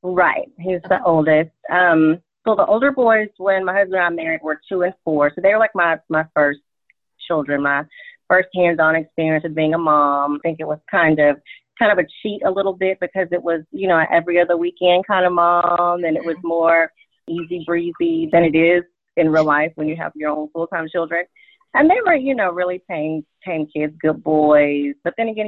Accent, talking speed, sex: American, 220 wpm, female